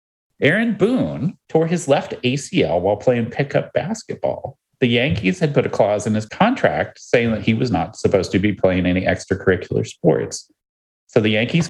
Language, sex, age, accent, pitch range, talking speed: English, male, 30-49, American, 105-135 Hz, 175 wpm